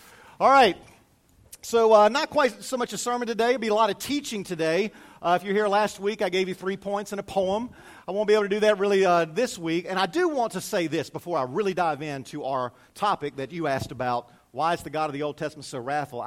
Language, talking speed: English, 270 wpm